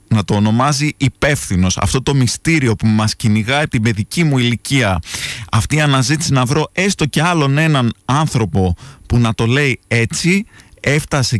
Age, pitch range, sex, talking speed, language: 20-39, 105-140 Hz, male, 160 wpm, Greek